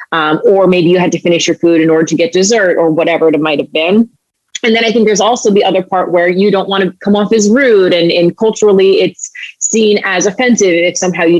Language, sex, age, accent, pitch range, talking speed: English, female, 30-49, American, 170-200 Hz, 255 wpm